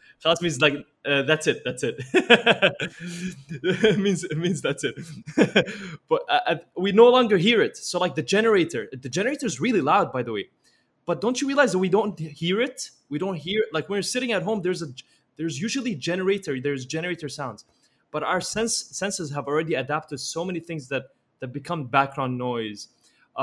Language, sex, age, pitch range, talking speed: English, male, 20-39, 135-185 Hz, 195 wpm